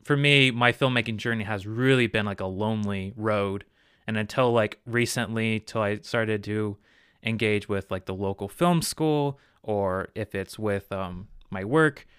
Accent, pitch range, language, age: American, 100-115 Hz, English, 20-39